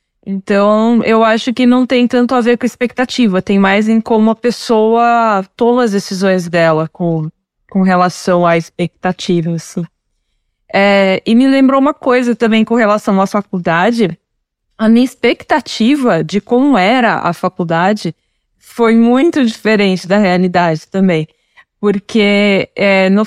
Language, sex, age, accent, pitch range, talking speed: Portuguese, female, 20-39, Brazilian, 195-245 Hz, 135 wpm